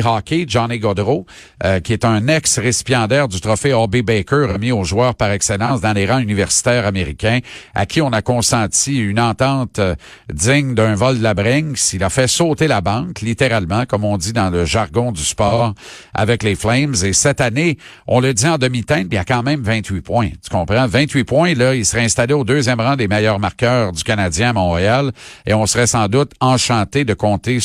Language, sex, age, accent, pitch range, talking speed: French, male, 50-69, Canadian, 110-140 Hz, 205 wpm